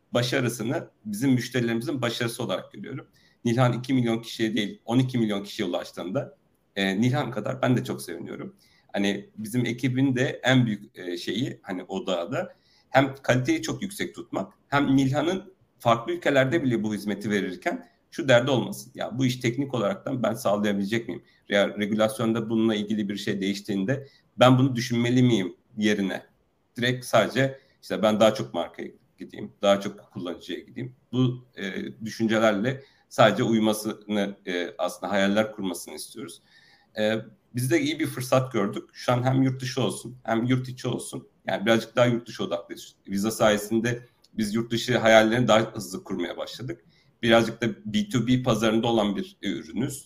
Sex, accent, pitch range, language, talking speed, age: male, native, 105-125 Hz, Turkish, 155 wpm, 50-69